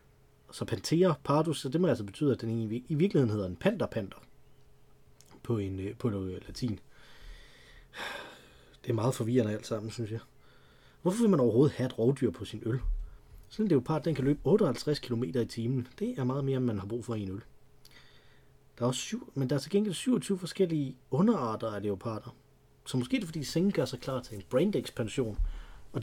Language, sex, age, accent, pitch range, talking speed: Danish, male, 30-49, native, 110-145 Hz, 200 wpm